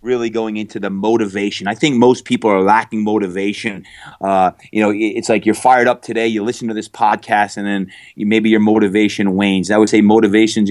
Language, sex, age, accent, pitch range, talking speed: English, male, 30-49, American, 100-115 Hz, 215 wpm